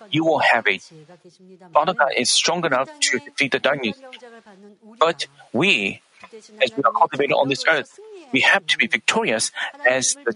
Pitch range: 150-240 Hz